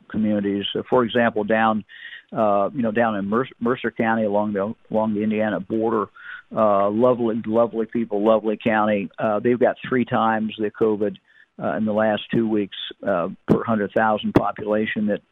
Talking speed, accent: 170 wpm, American